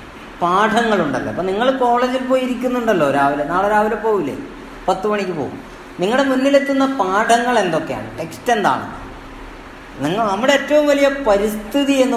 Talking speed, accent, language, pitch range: 125 wpm, native, Malayalam, 185-230 Hz